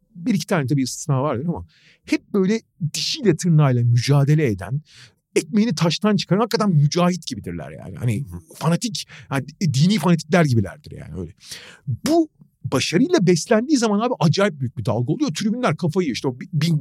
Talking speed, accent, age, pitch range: 150 wpm, native, 40-59, 125-180 Hz